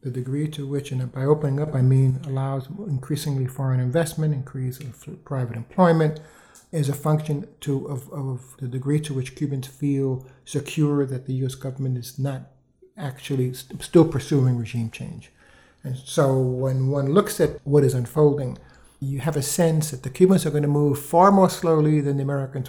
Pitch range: 130-150 Hz